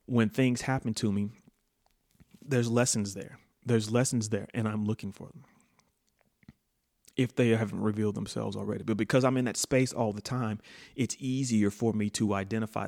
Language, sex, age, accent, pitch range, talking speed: English, male, 30-49, American, 105-120 Hz, 170 wpm